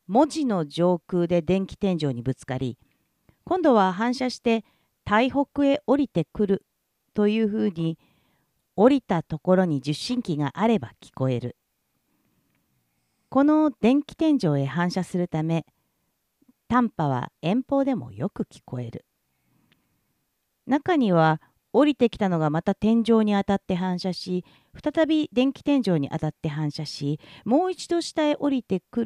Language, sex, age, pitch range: Japanese, female, 40-59, 155-255 Hz